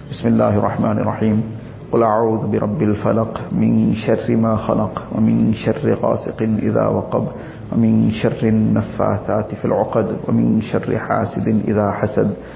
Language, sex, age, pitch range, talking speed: English, male, 50-69, 110-115 Hz, 130 wpm